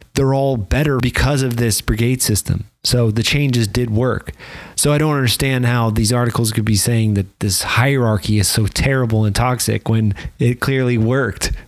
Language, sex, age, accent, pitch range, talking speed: English, male, 30-49, American, 105-130 Hz, 180 wpm